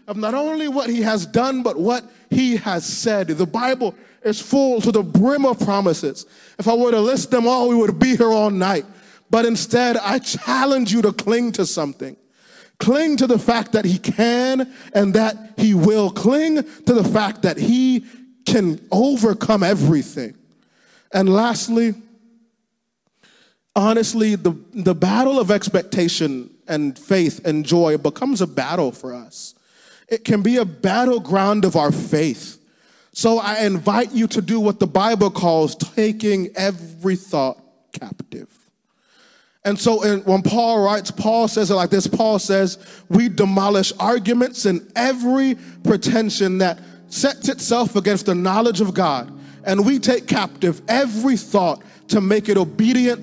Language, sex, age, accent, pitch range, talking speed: English, male, 20-39, American, 195-240 Hz, 155 wpm